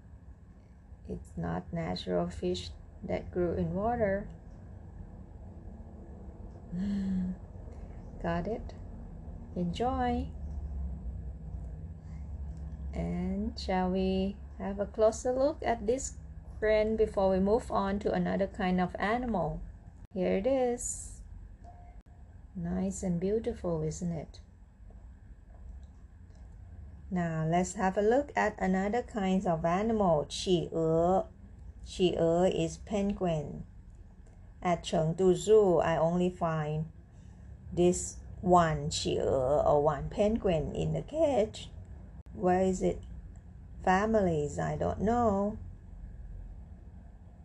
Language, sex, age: Chinese, female, 30-49